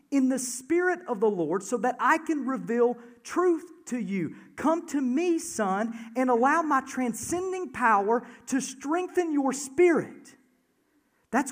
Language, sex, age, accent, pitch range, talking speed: English, male, 40-59, American, 200-270 Hz, 145 wpm